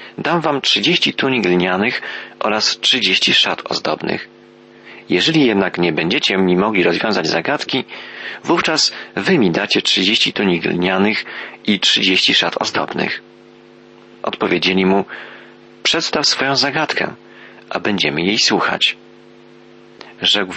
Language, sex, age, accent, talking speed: Polish, male, 40-59, native, 110 wpm